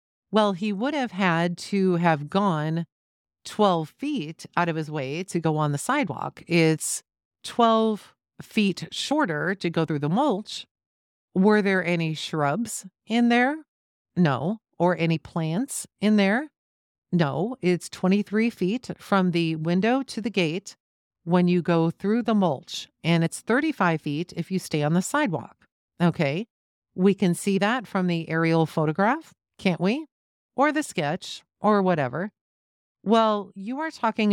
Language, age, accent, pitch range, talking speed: English, 40-59, American, 165-215 Hz, 150 wpm